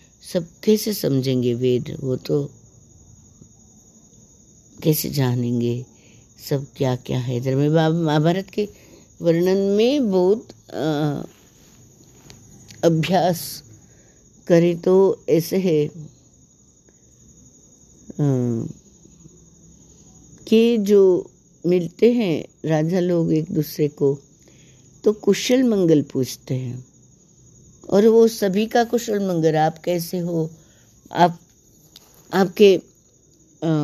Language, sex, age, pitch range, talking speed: Hindi, female, 60-79, 150-185 Hz, 90 wpm